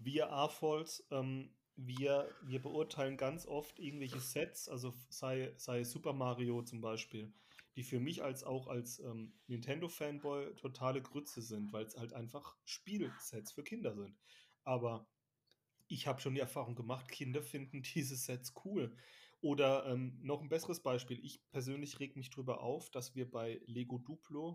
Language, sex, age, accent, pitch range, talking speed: German, male, 30-49, German, 120-145 Hz, 160 wpm